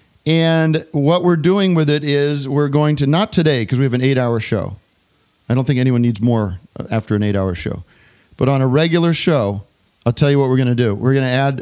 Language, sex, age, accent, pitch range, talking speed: English, male, 40-59, American, 125-155 Hz, 245 wpm